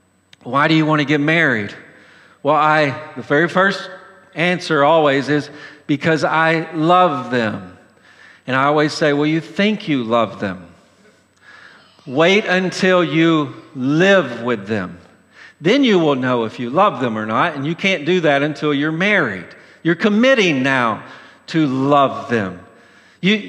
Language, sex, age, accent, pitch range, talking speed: English, male, 50-69, American, 150-205 Hz, 155 wpm